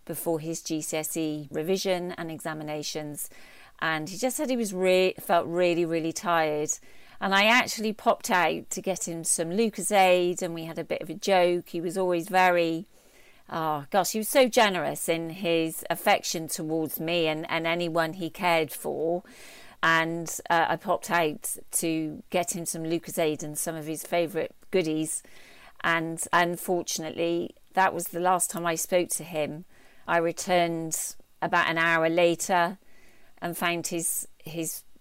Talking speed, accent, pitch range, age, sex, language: 160 wpm, British, 160-175 Hz, 40-59, female, English